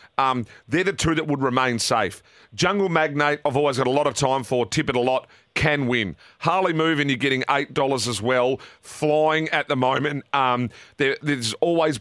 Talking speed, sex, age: 190 wpm, male, 40-59